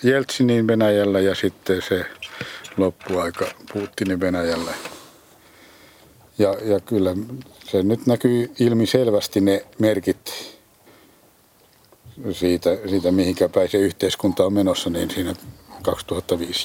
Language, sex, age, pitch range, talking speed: Finnish, male, 60-79, 90-115 Hz, 100 wpm